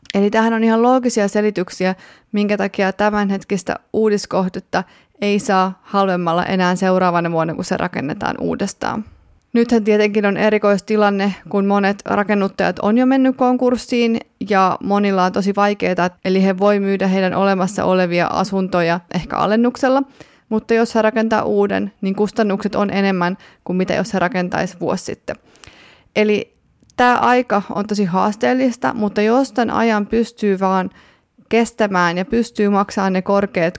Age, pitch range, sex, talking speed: 30-49, 185-220 Hz, female, 140 wpm